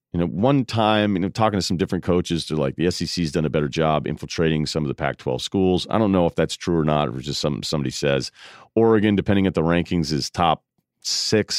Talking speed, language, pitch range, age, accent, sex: 250 wpm, English, 75-100 Hz, 40-59, American, male